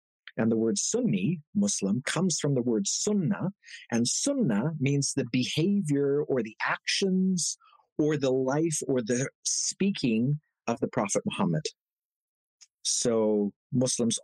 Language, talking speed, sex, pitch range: English, 125 wpm, male, 120-185 Hz